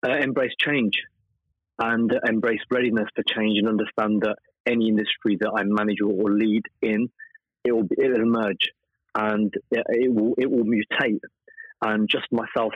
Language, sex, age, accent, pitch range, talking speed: English, male, 30-49, British, 105-130 Hz, 150 wpm